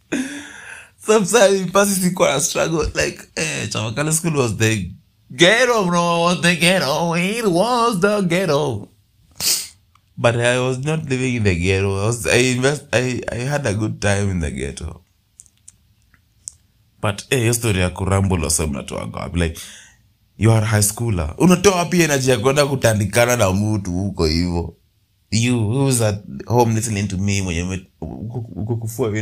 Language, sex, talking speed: Swahili, male, 155 wpm